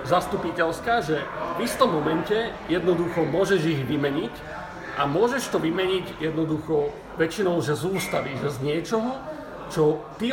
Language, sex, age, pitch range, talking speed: Slovak, male, 40-59, 160-215 Hz, 135 wpm